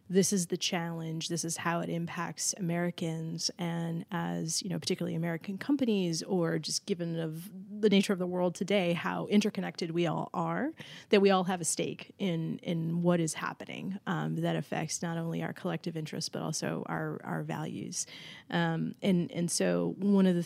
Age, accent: 30-49, American